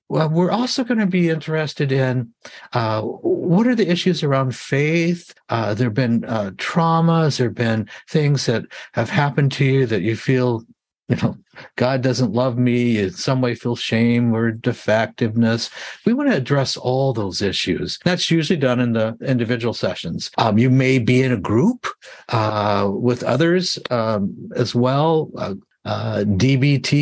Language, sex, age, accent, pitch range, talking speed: English, male, 60-79, American, 115-160 Hz, 160 wpm